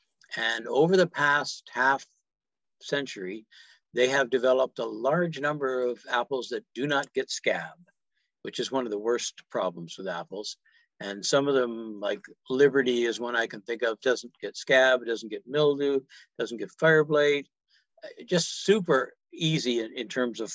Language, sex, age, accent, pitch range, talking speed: English, male, 60-79, American, 120-155 Hz, 170 wpm